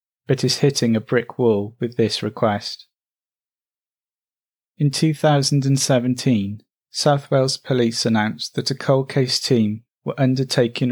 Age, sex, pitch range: 30-49, male, 115-130 Hz